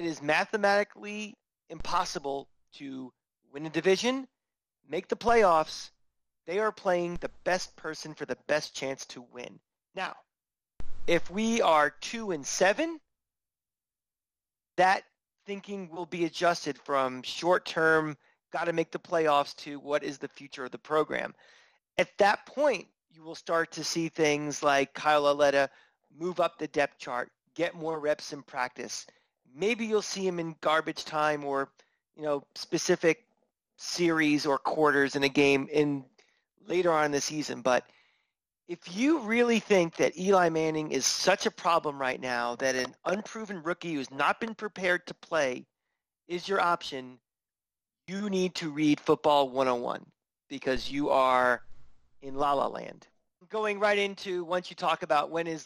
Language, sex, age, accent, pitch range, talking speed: English, male, 30-49, American, 140-180 Hz, 155 wpm